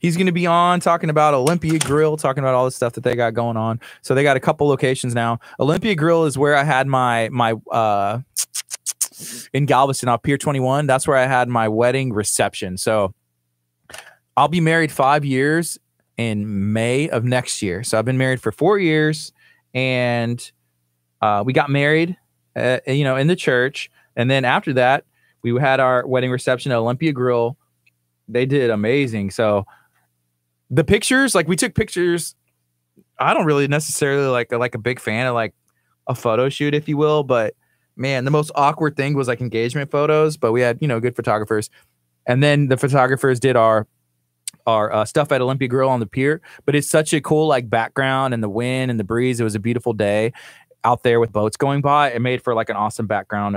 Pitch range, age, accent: 110-145 Hz, 20-39, American